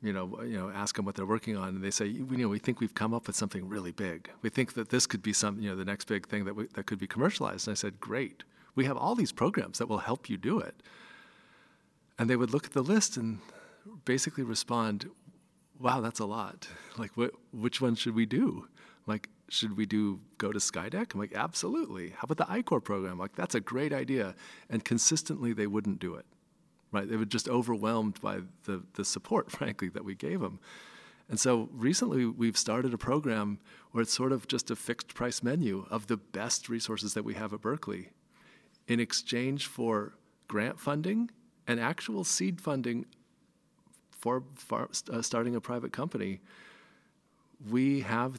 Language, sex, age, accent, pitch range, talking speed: English, male, 40-59, American, 105-130 Hz, 200 wpm